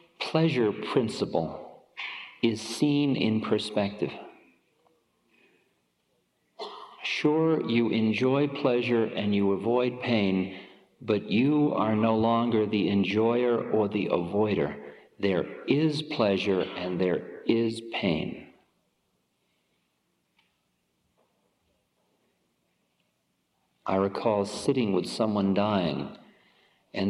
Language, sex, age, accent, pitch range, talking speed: English, male, 50-69, American, 95-125 Hz, 85 wpm